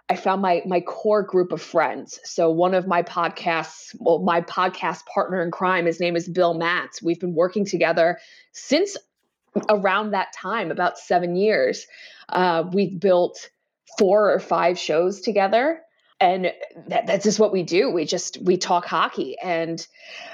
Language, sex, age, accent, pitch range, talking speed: English, female, 20-39, American, 170-200 Hz, 160 wpm